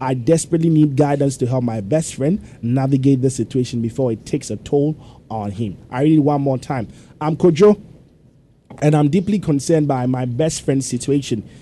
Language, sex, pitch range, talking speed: English, male, 125-155 Hz, 185 wpm